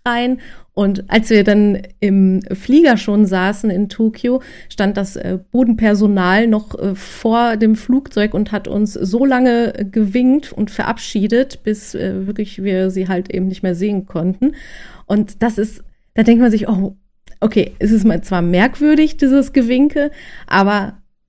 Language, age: German, 30-49